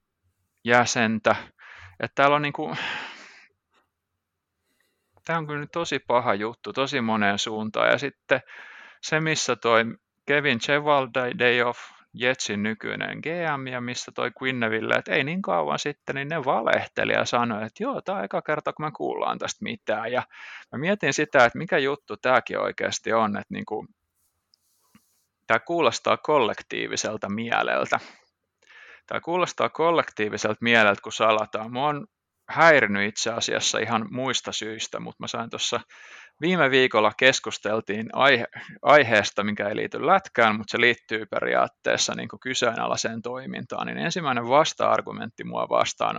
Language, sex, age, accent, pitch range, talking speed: Finnish, male, 20-39, native, 110-145 Hz, 140 wpm